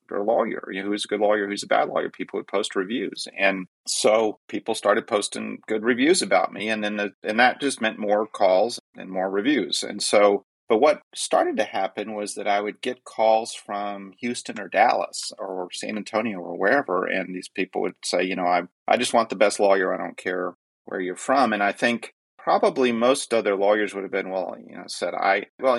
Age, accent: 40-59, American